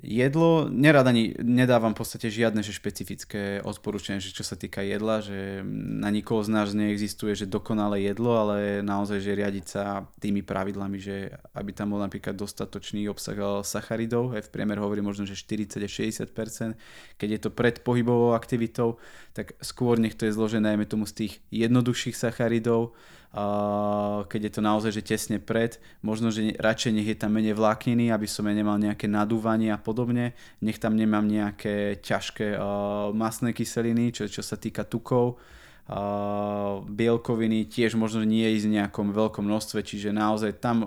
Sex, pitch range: male, 100-115 Hz